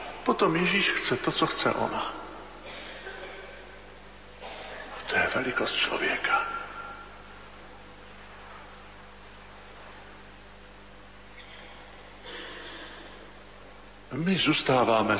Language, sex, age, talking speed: Slovak, male, 50-69, 50 wpm